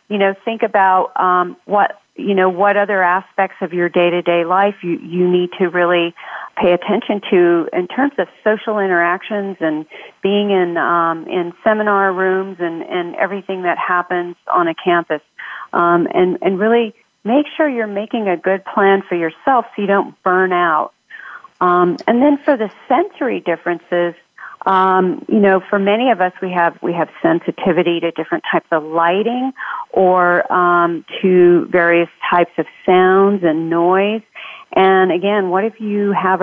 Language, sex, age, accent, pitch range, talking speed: English, female, 40-59, American, 175-205 Hz, 165 wpm